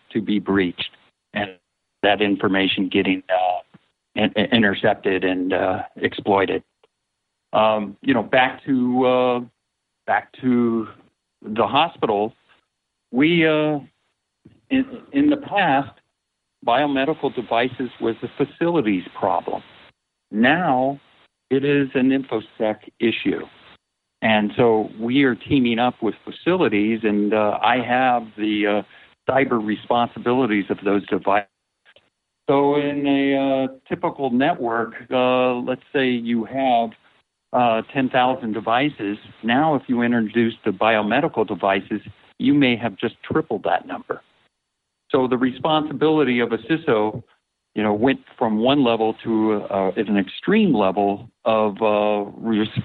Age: 50-69